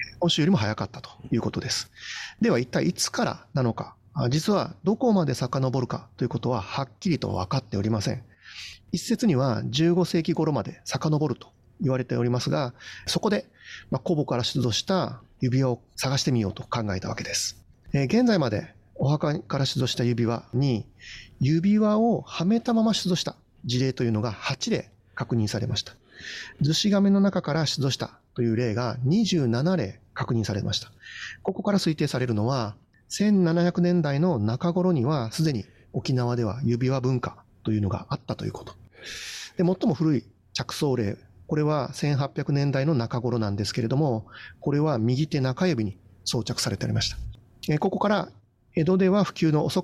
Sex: male